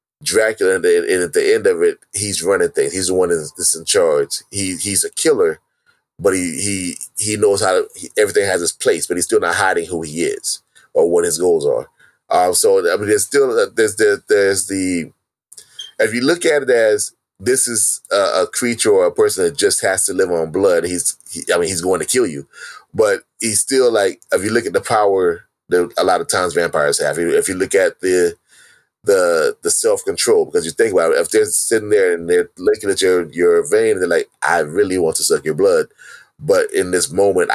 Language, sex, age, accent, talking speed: English, male, 30-49, American, 225 wpm